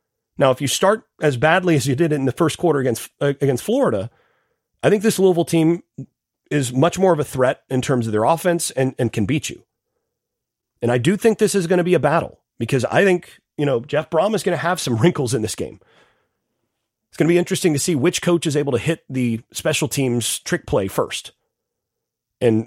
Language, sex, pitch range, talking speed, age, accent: English, male, 120-170 Hz, 220 wpm, 30-49, American